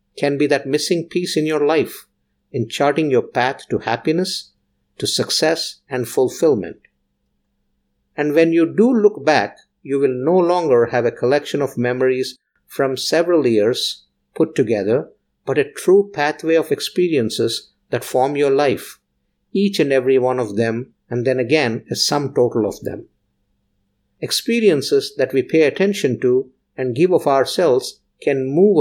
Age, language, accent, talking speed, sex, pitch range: 50-69, English, Indian, 155 wpm, male, 125-180 Hz